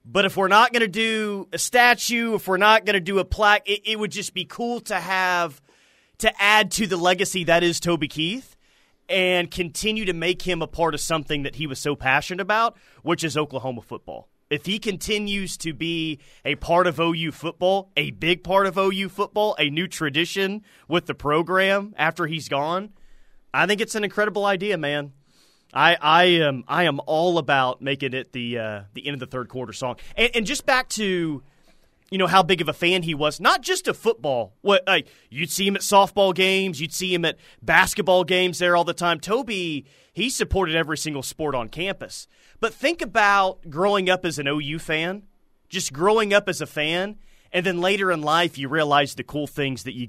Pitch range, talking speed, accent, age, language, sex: 150-200 Hz, 210 wpm, American, 30-49, English, male